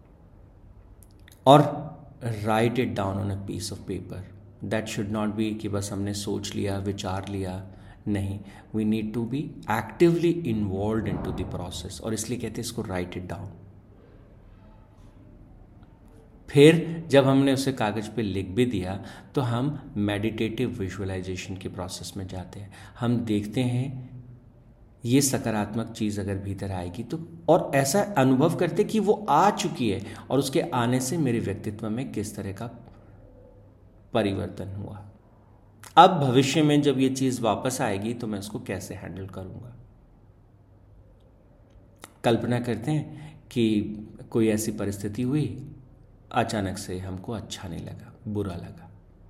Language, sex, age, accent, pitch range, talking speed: Hindi, male, 50-69, native, 100-120 Hz, 145 wpm